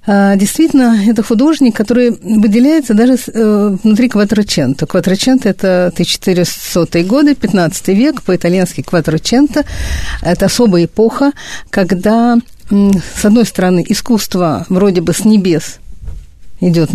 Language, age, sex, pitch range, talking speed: Russian, 50-69, female, 175-230 Hz, 110 wpm